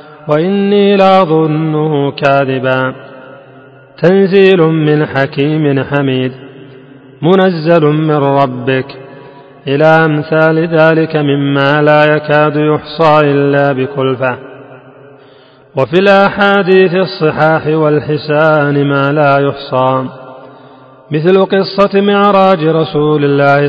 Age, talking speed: 40-59, 80 wpm